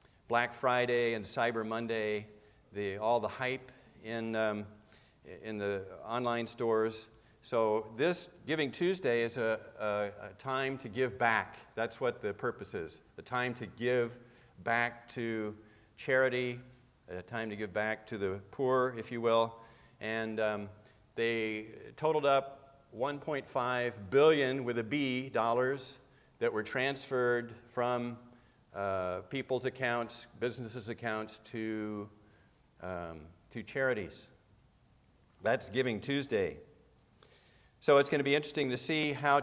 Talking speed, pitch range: 130 wpm, 110-130 Hz